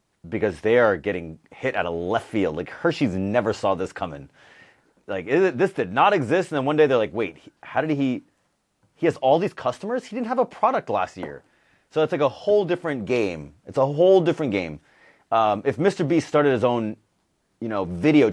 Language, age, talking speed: English, 30-49, 210 wpm